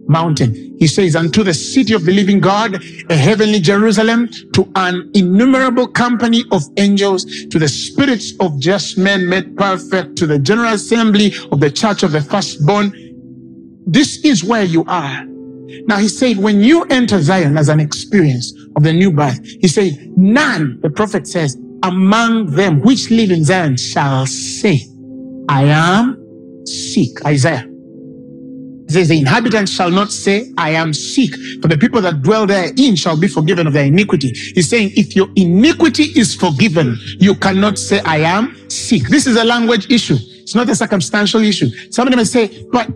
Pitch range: 155-220 Hz